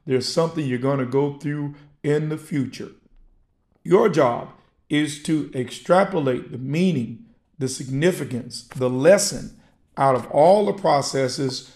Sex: male